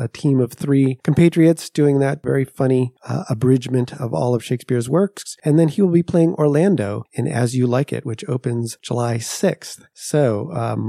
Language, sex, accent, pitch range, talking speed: English, male, American, 125-155 Hz, 185 wpm